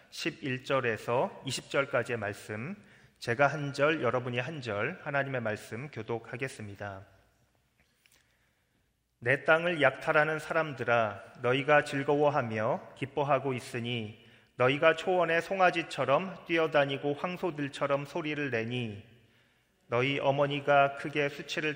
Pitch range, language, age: 125-155 Hz, Korean, 30-49